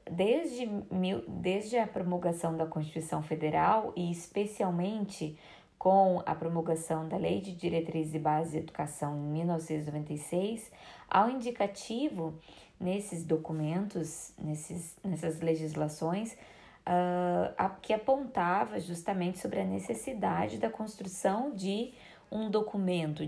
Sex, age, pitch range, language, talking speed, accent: female, 20-39, 165-215 Hz, Portuguese, 105 wpm, Brazilian